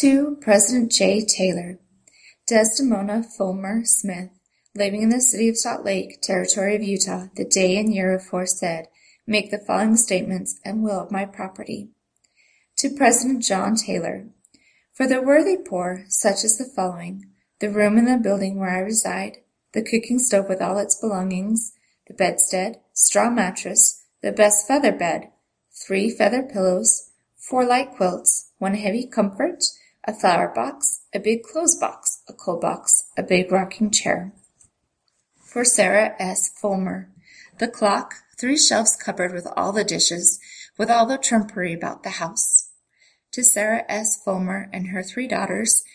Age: 20-39